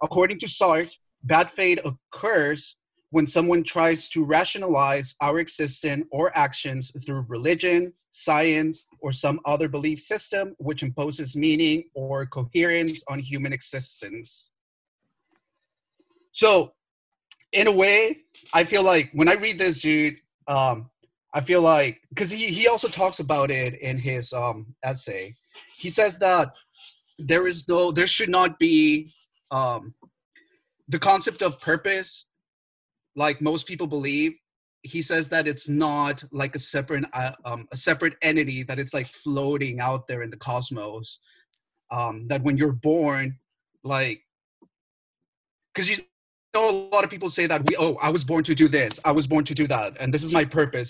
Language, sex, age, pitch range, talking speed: English, male, 30-49, 135-170 Hz, 155 wpm